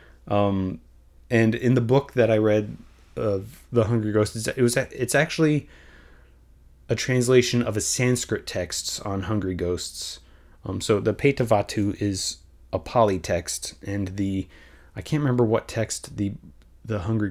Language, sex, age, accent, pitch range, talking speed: English, male, 30-49, American, 75-110 Hz, 150 wpm